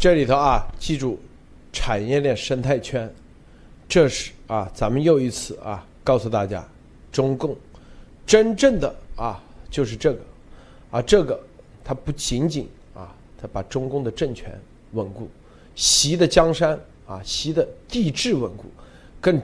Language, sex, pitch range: Chinese, male, 105-145 Hz